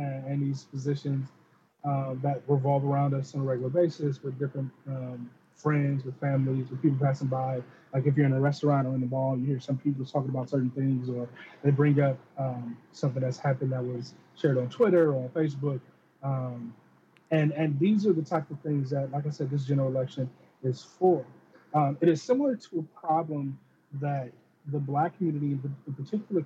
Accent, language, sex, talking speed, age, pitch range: American, English, male, 200 wpm, 20-39, 130-150 Hz